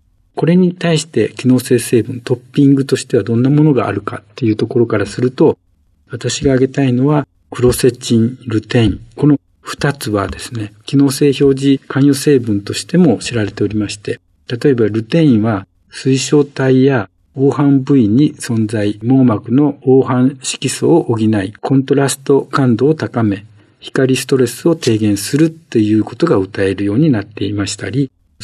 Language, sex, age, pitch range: Japanese, male, 50-69, 105-140 Hz